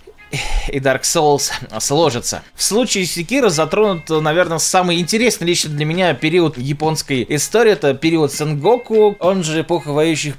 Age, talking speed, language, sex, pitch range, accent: 20-39, 140 wpm, Russian, male, 140-190 Hz, native